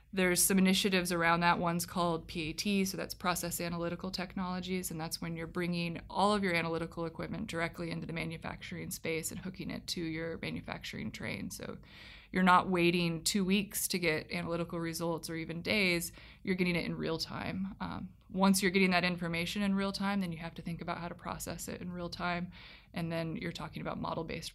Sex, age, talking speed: female, 20-39, 200 wpm